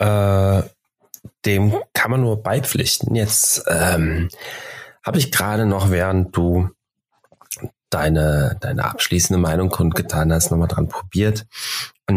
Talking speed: 120 wpm